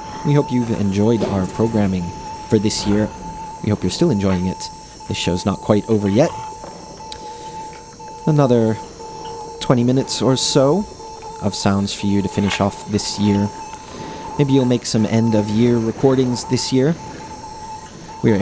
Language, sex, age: English, male, 30-49